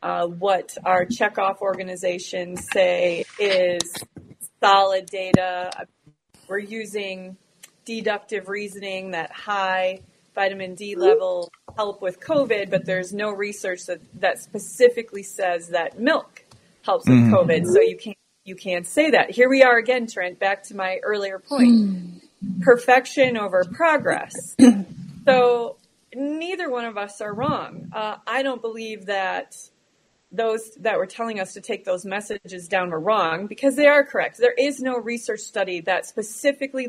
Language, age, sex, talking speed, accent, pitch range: English, 30-49, female, 145 wpm, American, 190-250 Hz